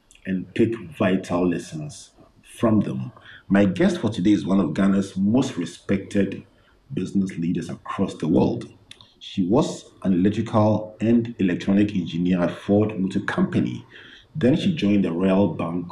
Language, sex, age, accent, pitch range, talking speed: English, male, 50-69, Nigerian, 90-110 Hz, 145 wpm